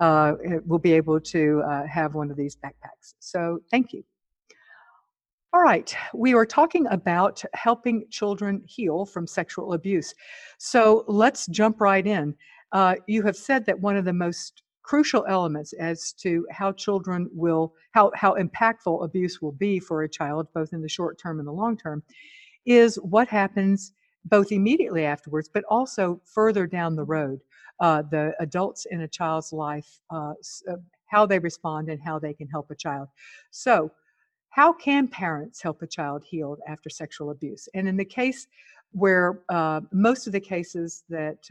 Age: 50-69